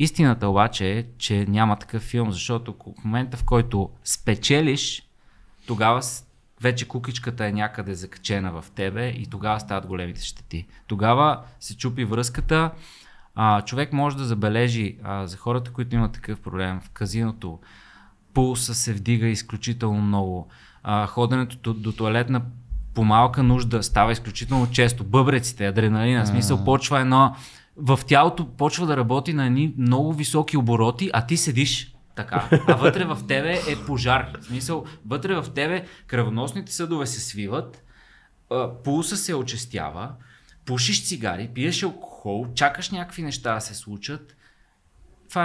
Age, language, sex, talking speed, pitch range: 20-39, Bulgarian, male, 145 wpm, 110-135 Hz